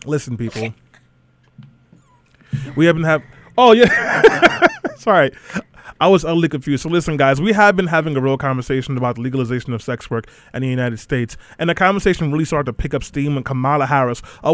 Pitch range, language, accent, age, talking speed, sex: 135-170 Hz, English, American, 20-39, 180 wpm, male